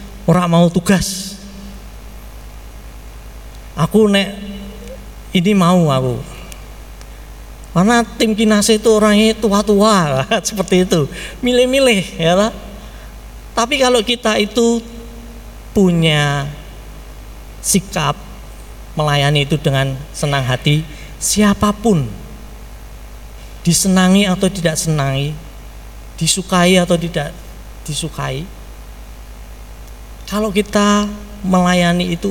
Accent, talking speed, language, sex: native, 80 wpm, Indonesian, male